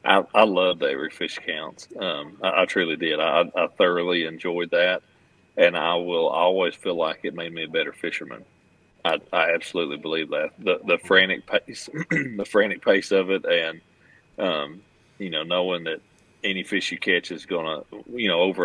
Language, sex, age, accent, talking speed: English, male, 40-59, American, 185 wpm